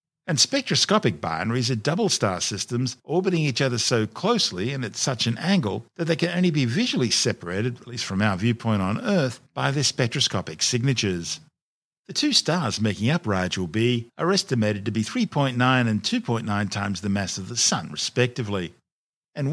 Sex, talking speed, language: male, 175 wpm, English